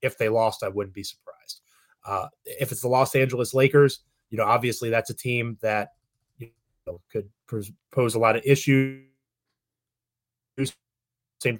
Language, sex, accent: English, male, American